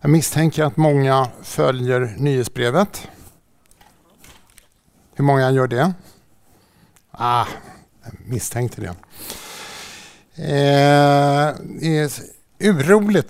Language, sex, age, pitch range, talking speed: Swedish, male, 60-79, 120-160 Hz, 80 wpm